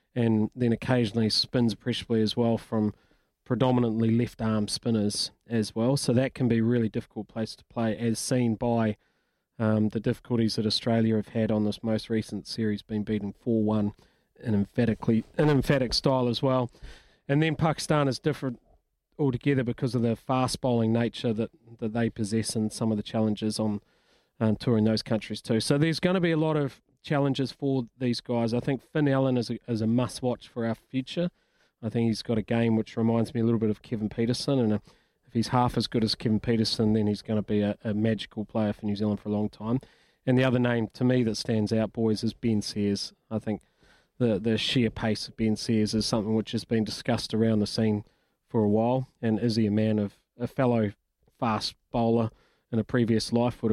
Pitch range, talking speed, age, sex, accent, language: 110-125 Hz, 210 wpm, 30-49, male, Australian, English